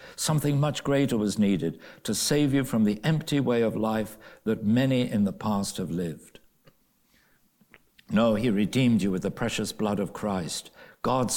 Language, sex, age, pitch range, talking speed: English, male, 60-79, 105-145 Hz, 170 wpm